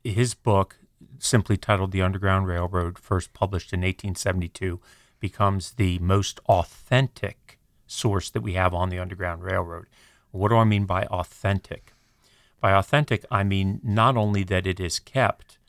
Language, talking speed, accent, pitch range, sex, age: English, 150 wpm, American, 95-115 Hz, male, 40-59